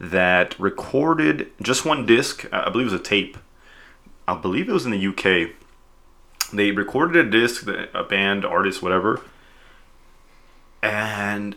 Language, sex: English, male